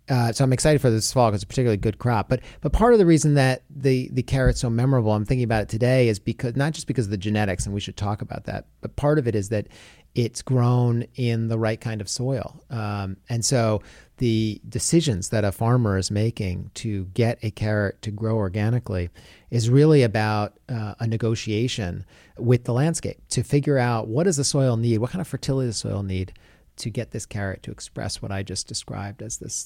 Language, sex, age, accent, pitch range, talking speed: English, male, 40-59, American, 105-135 Hz, 225 wpm